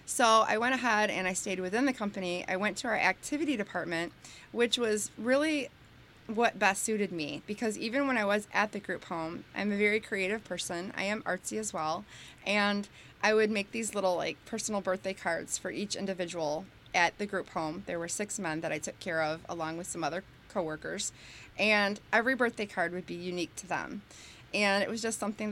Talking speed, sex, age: 205 wpm, female, 20-39